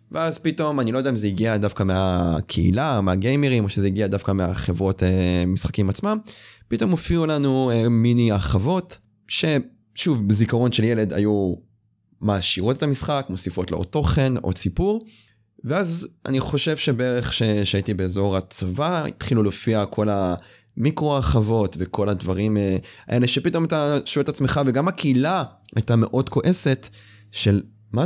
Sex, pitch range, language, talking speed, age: male, 100-130 Hz, Hebrew, 135 wpm, 20-39